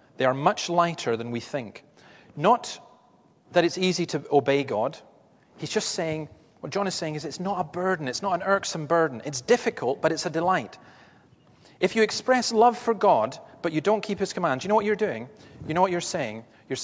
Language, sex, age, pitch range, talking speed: English, male, 30-49, 125-180 Hz, 215 wpm